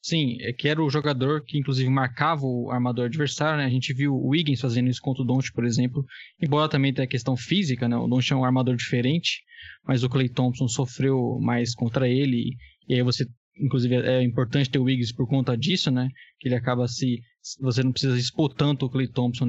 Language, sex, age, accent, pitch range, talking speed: Portuguese, male, 10-29, Brazilian, 125-145 Hz, 220 wpm